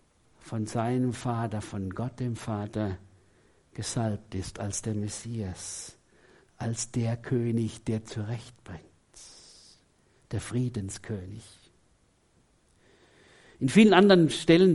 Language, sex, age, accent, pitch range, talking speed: German, male, 60-79, German, 110-160 Hz, 95 wpm